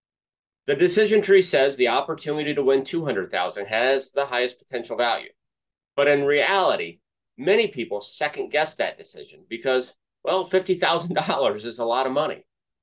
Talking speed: 140 wpm